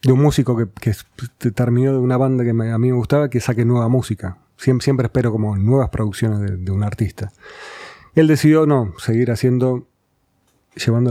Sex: male